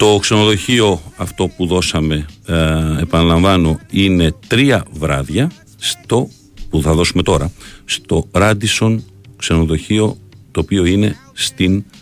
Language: Greek